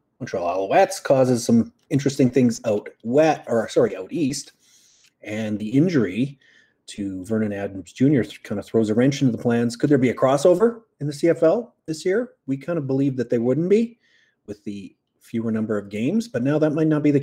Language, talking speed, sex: English, 200 wpm, male